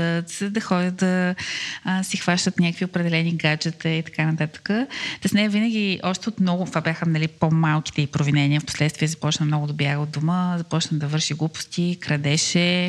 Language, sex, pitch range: Bulgarian, female, 155-195 Hz